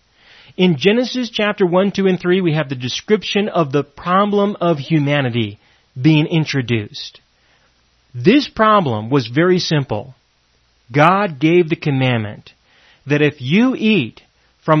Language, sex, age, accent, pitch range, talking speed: English, male, 40-59, American, 135-200 Hz, 130 wpm